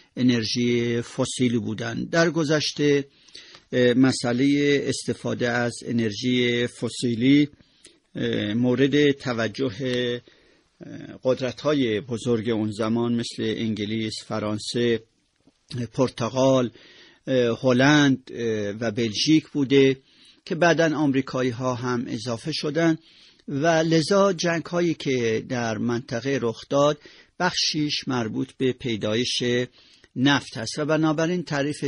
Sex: male